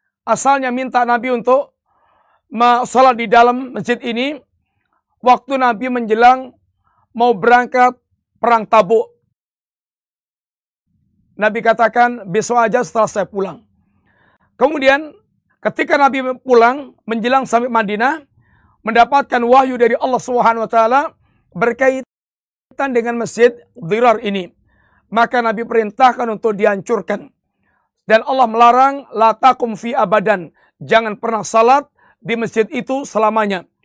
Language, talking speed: Indonesian, 105 wpm